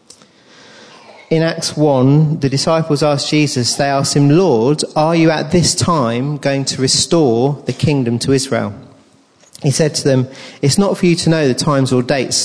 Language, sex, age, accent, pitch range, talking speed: English, male, 40-59, British, 120-150 Hz, 180 wpm